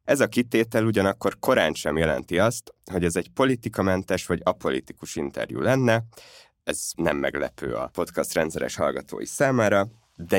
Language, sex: Hungarian, male